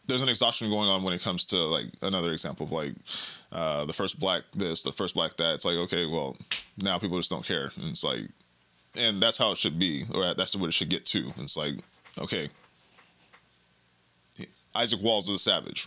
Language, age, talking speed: English, 20-39, 220 wpm